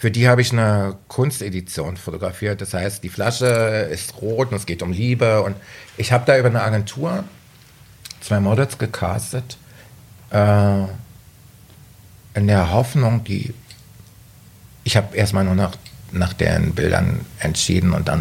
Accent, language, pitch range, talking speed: German, German, 100-120 Hz, 145 wpm